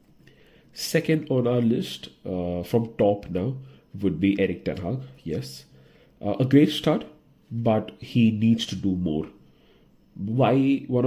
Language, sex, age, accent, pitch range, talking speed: English, male, 30-49, Indian, 100-125 Hz, 140 wpm